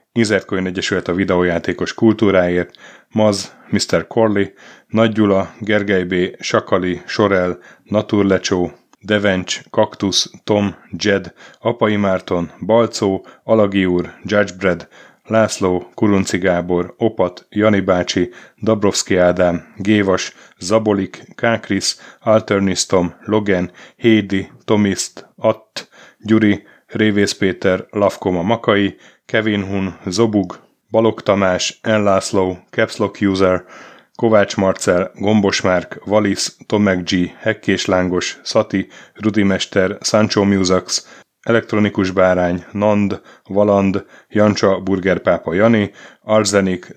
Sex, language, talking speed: male, Hungarian, 95 wpm